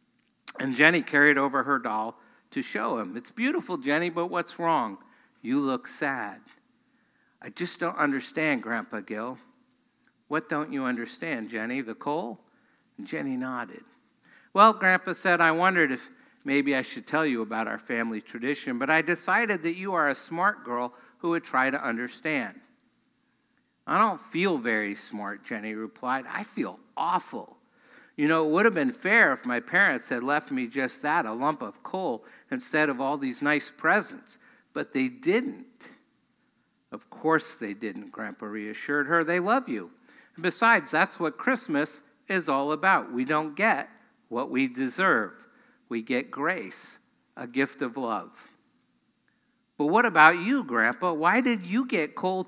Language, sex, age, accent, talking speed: English, male, 60-79, American, 160 wpm